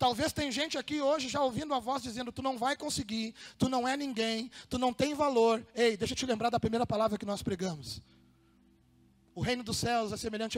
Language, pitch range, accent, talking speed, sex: Portuguese, 215-275 Hz, Brazilian, 220 wpm, male